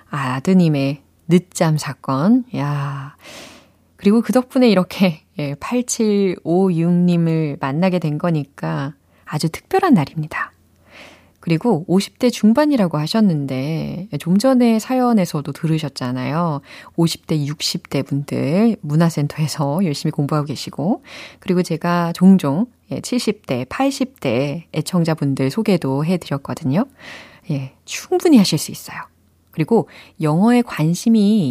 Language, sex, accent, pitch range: Korean, female, native, 145-215 Hz